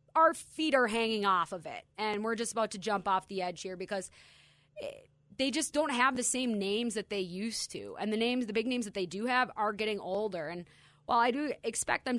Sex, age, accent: female, 20-39, American